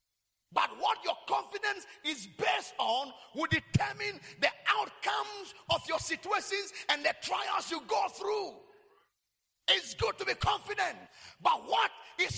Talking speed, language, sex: 135 wpm, English, male